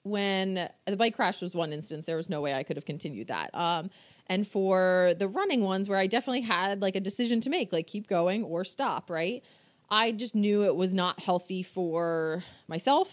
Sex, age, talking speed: female, 30-49, 210 wpm